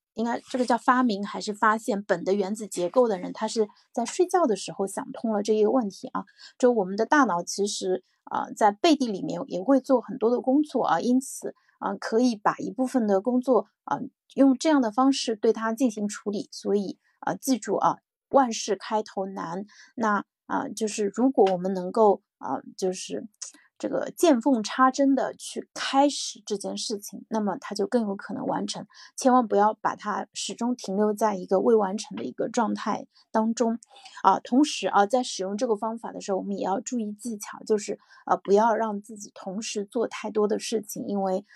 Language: Chinese